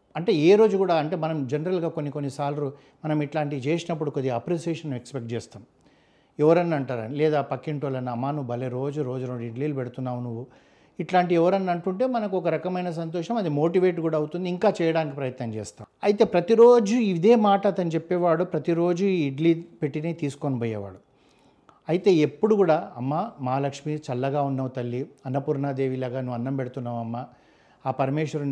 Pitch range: 130-170 Hz